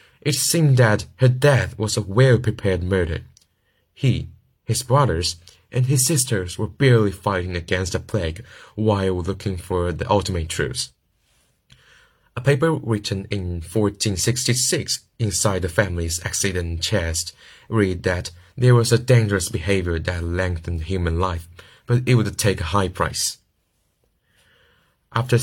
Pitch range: 90-115 Hz